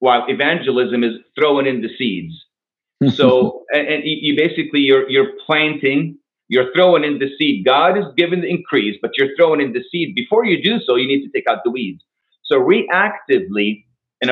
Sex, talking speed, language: male, 185 wpm, English